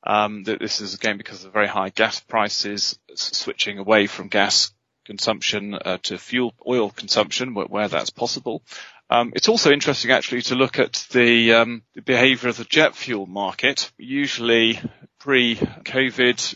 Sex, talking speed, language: male, 160 wpm, English